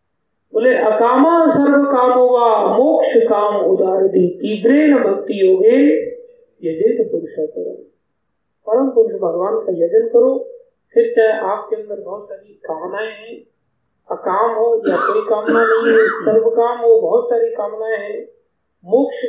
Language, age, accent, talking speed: Hindi, 50-69, native, 75 wpm